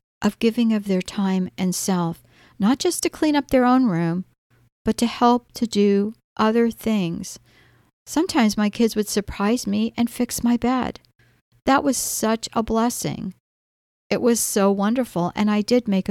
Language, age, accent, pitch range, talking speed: English, 60-79, American, 185-235 Hz, 170 wpm